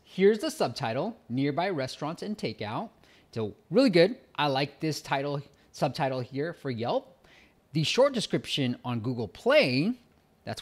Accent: American